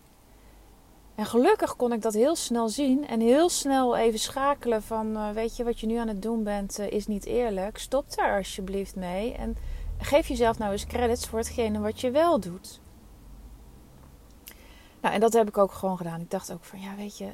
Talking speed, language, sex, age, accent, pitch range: 205 wpm, Dutch, female, 30-49, Dutch, 185-225 Hz